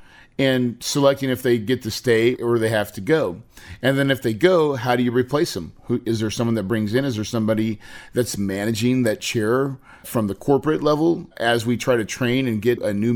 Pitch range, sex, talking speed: 110-140 Hz, male, 225 wpm